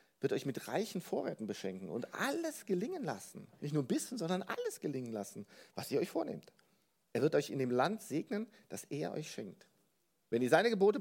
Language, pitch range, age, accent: German, 125-205 Hz, 50-69, German